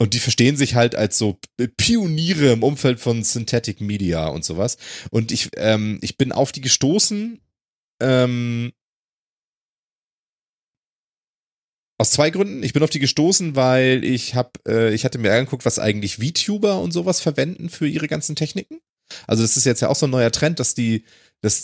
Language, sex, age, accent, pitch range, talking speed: German, male, 30-49, German, 110-155 Hz, 175 wpm